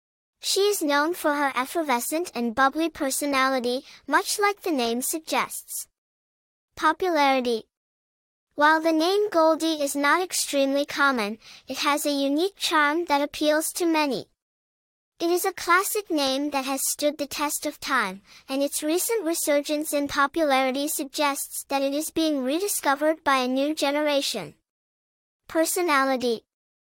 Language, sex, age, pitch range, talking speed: English, male, 10-29, 275-330 Hz, 135 wpm